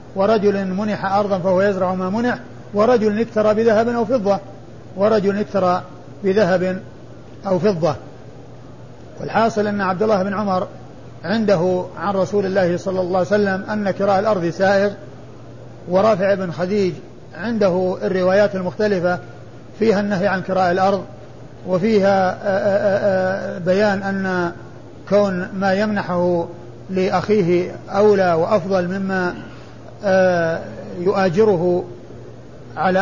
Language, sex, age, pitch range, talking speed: Arabic, male, 50-69, 180-205 Hz, 110 wpm